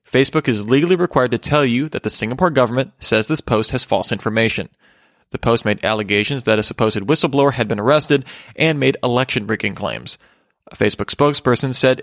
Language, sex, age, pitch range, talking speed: English, male, 30-49, 110-140 Hz, 180 wpm